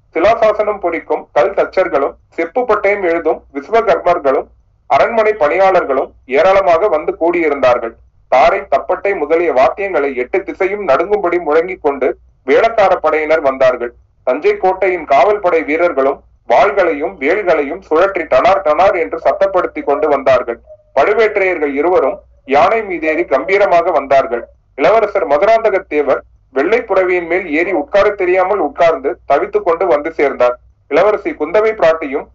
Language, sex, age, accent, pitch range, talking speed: Tamil, male, 30-49, native, 150-205 Hz, 110 wpm